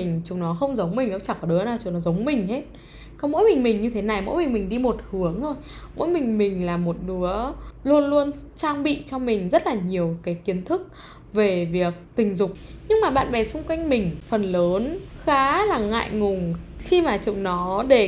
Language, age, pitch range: Vietnamese, 10-29, 180-290 Hz